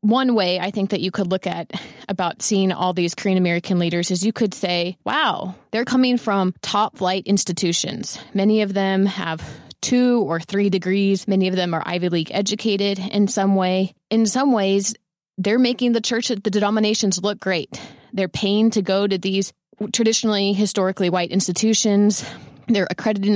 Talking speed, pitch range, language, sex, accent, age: 175 wpm, 180-210 Hz, English, female, American, 20-39